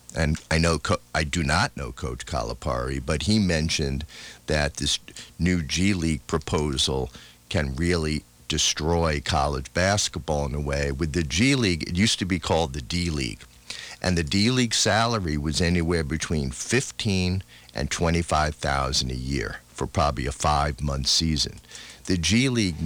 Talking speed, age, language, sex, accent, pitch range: 160 wpm, 50-69, English, male, American, 70-85 Hz